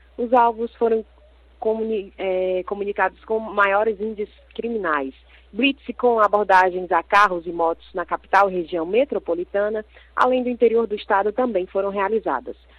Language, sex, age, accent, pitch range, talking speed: Portuguese, female, 20-39, Brazilian, 175-220 Hz, 130 wpm